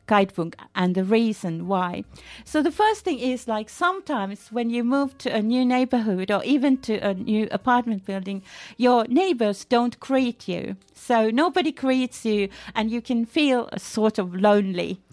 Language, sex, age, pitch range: Japanese, female, 40-59, 200-255 Hz